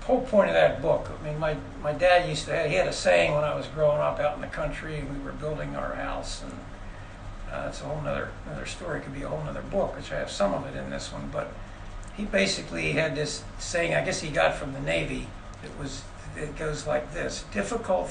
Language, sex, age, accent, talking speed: English, male, 60-79, American, 250 wpm